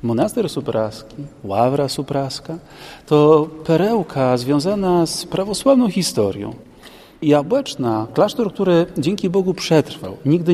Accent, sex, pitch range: native, male, 120-165 Hz